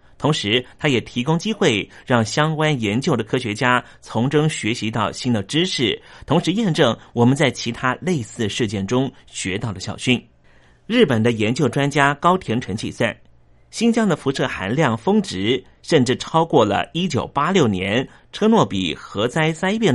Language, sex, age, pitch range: Chinese, male, 30-49, 105-155 Hz